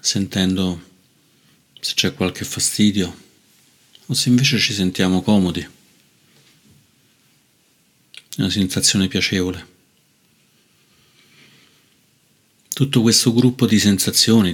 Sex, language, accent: male, Italian, native